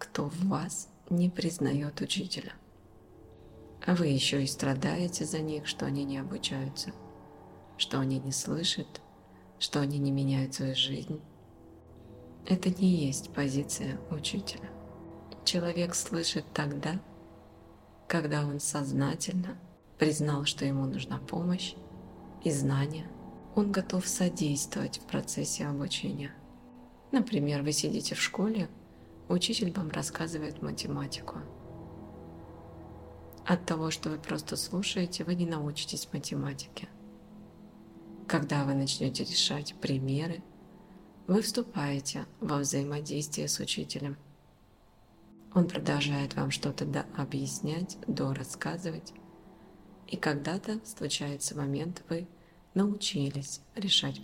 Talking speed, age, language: 105 wpm, 20-39, Russian